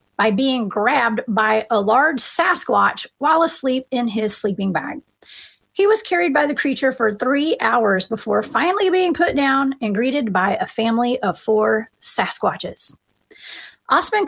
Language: English